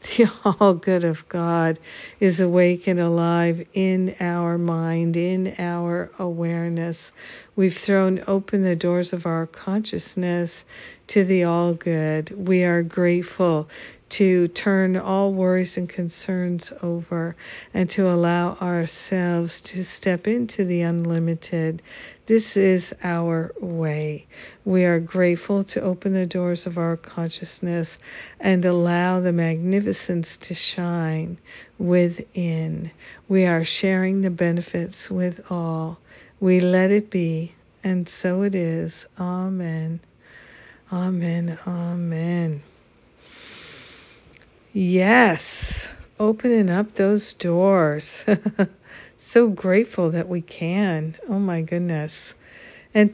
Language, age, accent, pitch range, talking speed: English, 50-69, American, 170-190 Hz, 110 wpm